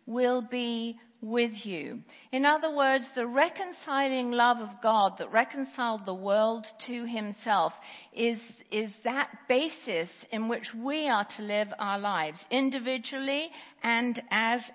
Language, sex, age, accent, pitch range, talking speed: English, female, 50-69, British, 200-250 Hz, 135 wpm